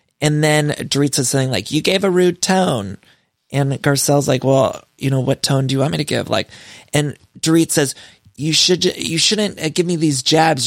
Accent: American